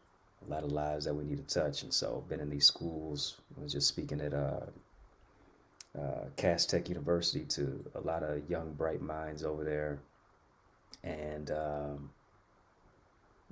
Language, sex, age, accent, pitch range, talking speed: English, male, 30-49, American, 75-90 Hz, 165 wpm